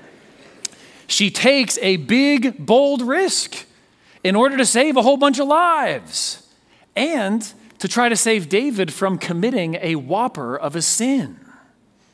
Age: 40-59